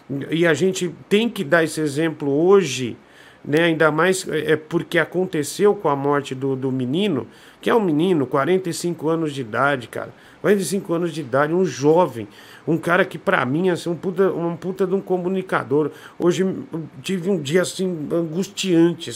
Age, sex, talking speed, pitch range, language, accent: 50-69, male, 170 wpm, 160-200 Hz, Portuguese, Brazilian